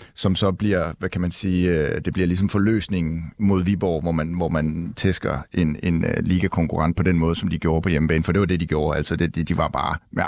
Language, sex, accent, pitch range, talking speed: Danish, male, native, 90-120 Hz, 245 wpm